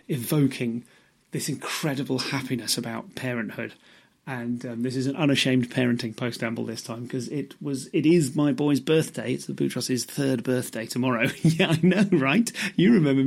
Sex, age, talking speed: male, 30-49, 165 wpm